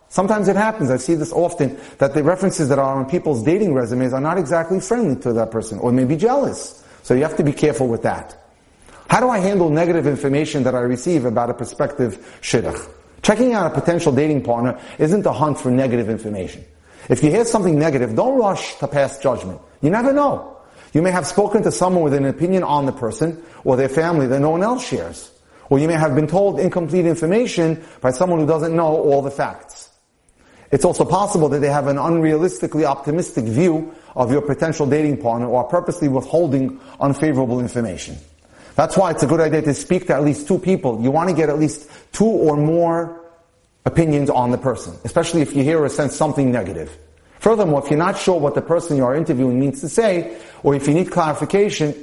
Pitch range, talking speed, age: 130-170 Hz, 210 wpm, 30-49